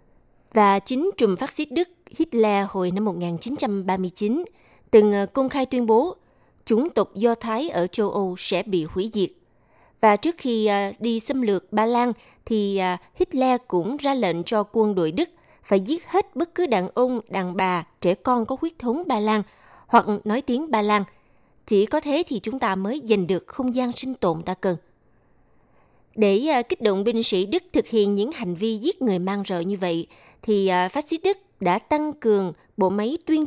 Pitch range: 190-255 Hz